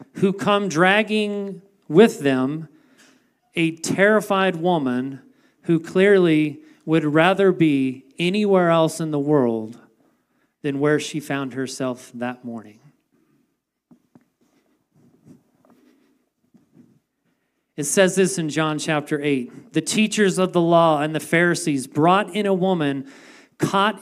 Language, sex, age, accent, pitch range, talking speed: English, male, 40-59, American, 145-195 Hz, 110 wpm